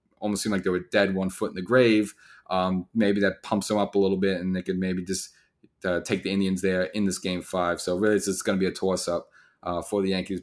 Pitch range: 95-105 Hz